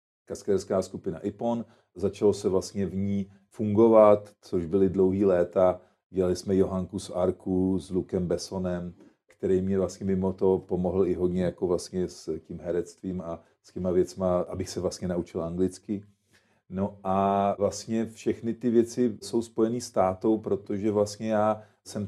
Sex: male